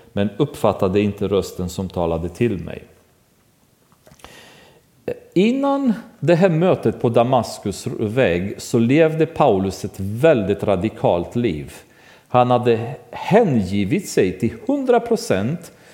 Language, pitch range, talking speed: Swedish, 100-140 Hz, 110 wpm